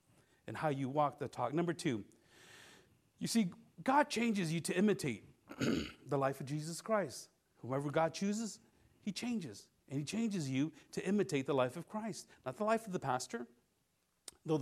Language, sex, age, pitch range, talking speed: English, male, 40-59, 135-205 Hz, 170 wpm